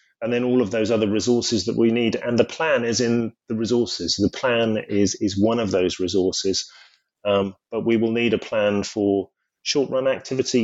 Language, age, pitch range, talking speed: English, 30-49, 100-115 Hz, 205 wpm